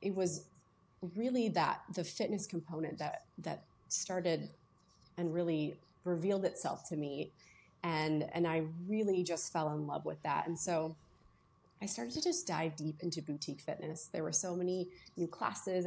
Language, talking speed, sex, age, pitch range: English, 165 wpm, female, 30-49, 160-195 Hz